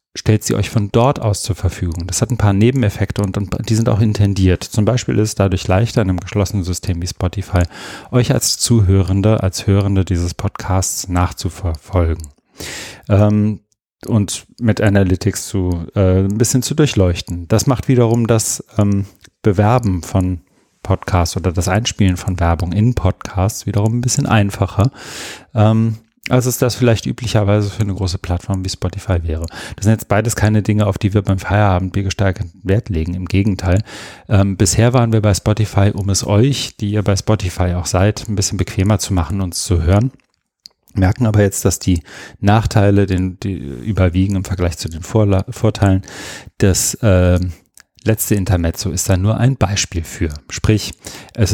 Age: 40-59